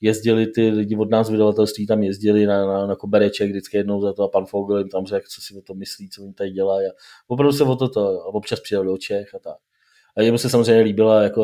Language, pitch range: Czech, 100-135 Hz